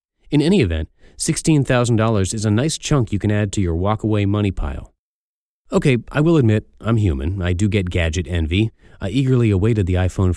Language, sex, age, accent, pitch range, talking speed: English, male, 30-49, American, 90-115 Hz, 185 wpm